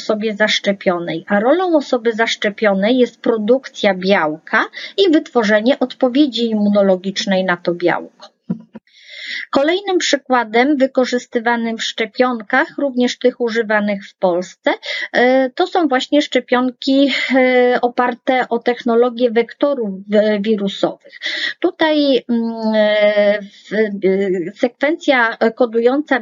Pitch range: 220-260 Hz